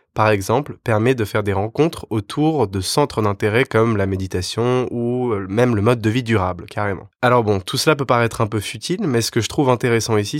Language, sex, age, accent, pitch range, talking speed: French, male, 20-39, French, 100-120 Hz, 220 wpm